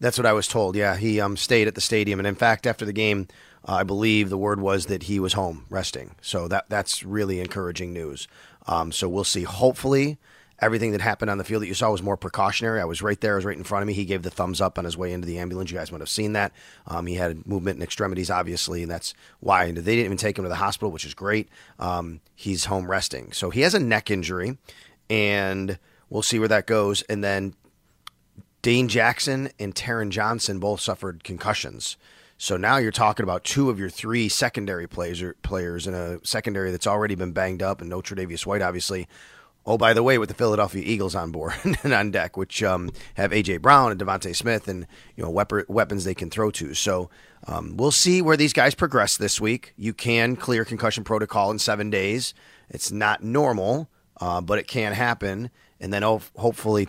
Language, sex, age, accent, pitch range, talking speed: English, male, 30-49, American, 90-110 Hz, 225 wpm